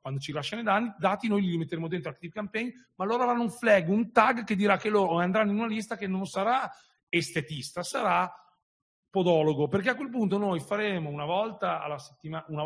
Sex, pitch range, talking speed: male, 140-195 Hz, 210 wpm